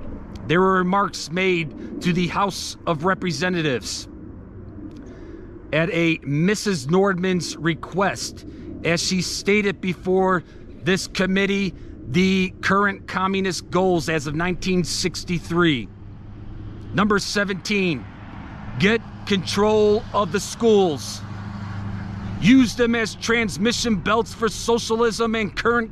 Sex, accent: male, American